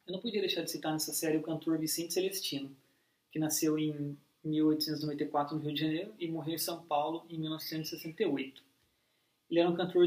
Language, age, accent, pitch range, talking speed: Portuguese, 20-39, Brazilian, 150-180 Hz, 185 wpm